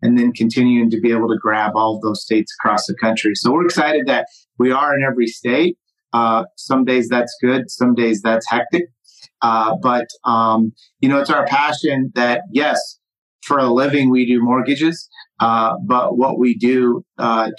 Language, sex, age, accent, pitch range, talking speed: English, male, 30-49, American, 115-140 Hz, 190 wpm